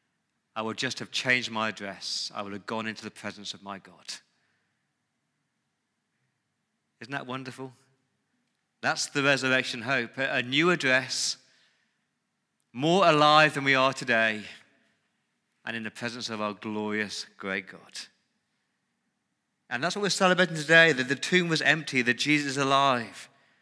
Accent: British